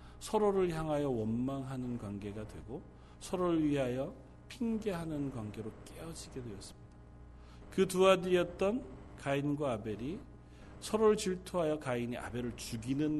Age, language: 40-59, Korean